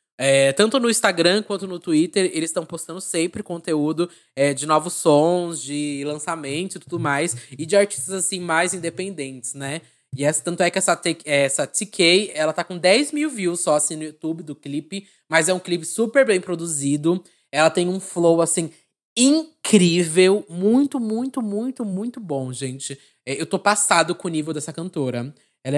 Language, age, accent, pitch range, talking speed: Portuguese, 20-39, Brazilian, 150-190 Hz, 180 wpm